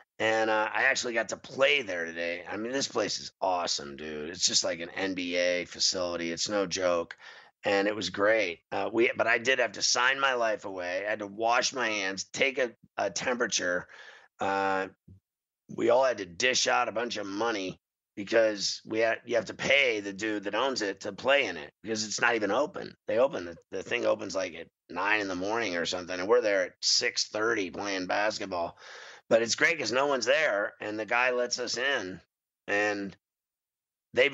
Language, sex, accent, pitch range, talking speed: English, male, American, 95-115 Hz, 205 wpm